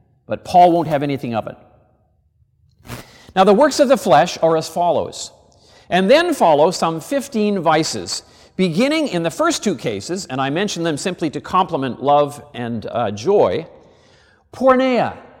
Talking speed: 155 wpm